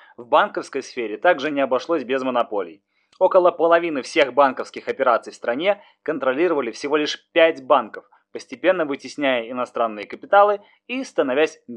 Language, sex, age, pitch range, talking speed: Russian, male, 20-39, 135-200 Hz, 135 wpm